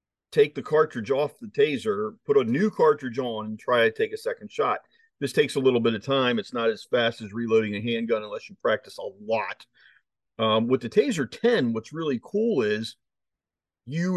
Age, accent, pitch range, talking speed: 40-59, American, 115-155 Hz, 205 wpm